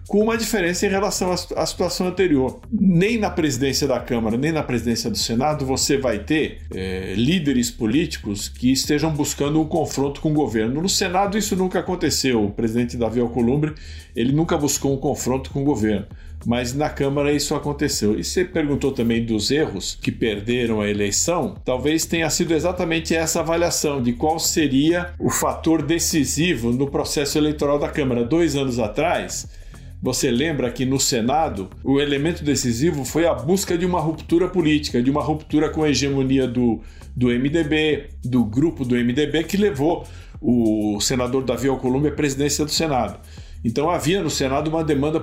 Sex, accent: male, Brazilian